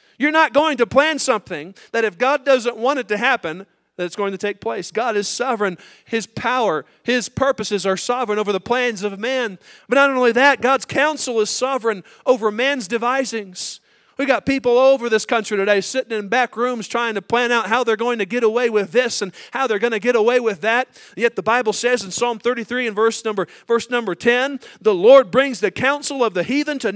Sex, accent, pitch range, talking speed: male, American, 210-265 Hz, 225 wpm